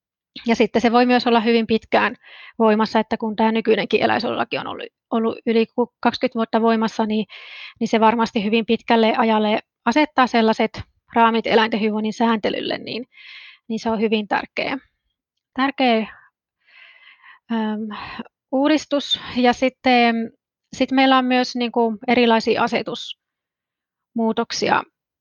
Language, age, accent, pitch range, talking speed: Finnish, 30-49, native, 225-255 Hz, 110 wpm